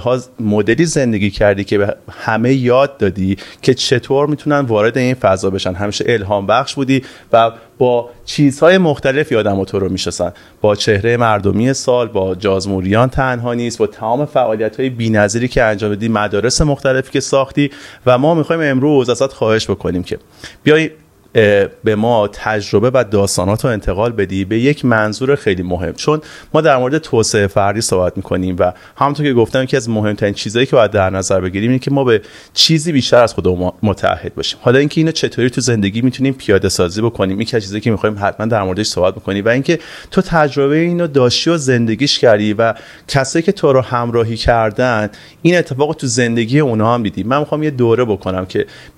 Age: 30-49